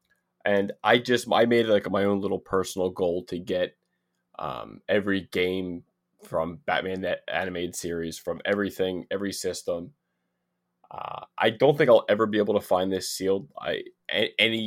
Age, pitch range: 20-39, 90-105 Hz